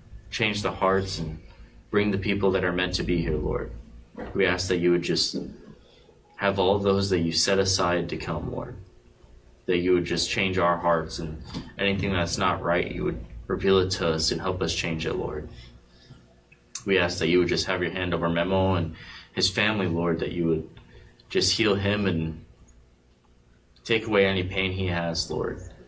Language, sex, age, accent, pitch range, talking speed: English, male, 20-39, American, 80-95 Hz, 195 wpm